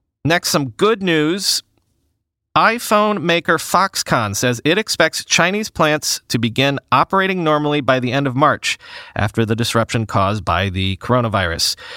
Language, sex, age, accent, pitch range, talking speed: English, male, 40-59, American, 125-165 Hz, 140 wpm